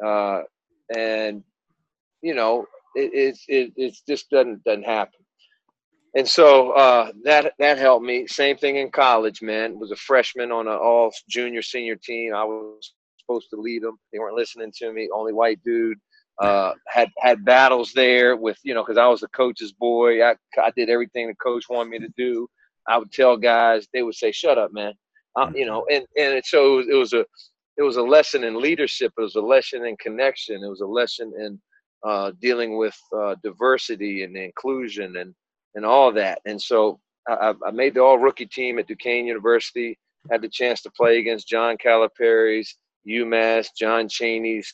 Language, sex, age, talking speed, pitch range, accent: English, male, 40-59, 190 wpm, 115-165 Hz, American